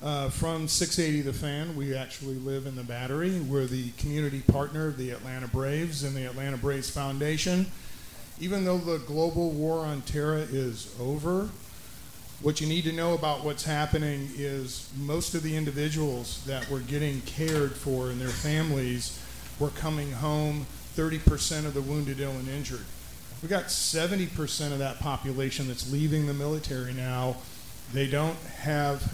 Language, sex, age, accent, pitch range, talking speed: English, male, 40-59, American, 130-155 Hz, 165 wpm